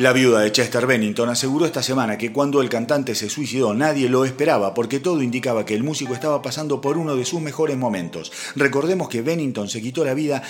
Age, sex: 40-59, male